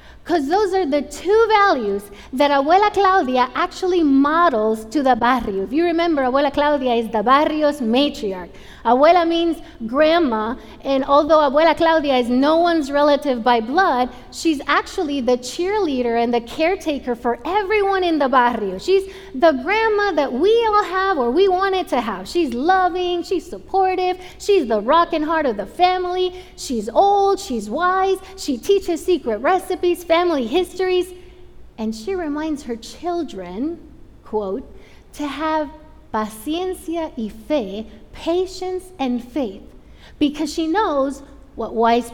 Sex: female